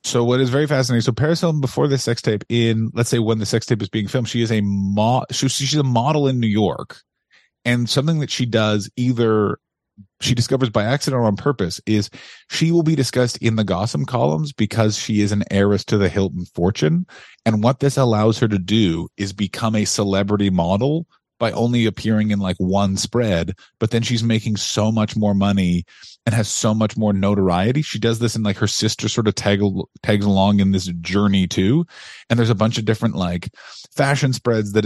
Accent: American